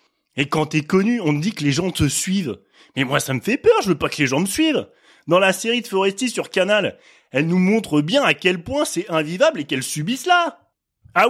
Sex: male